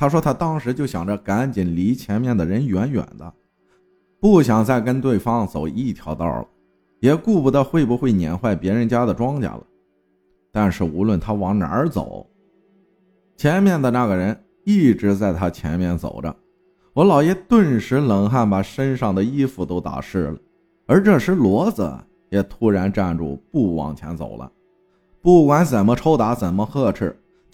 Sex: male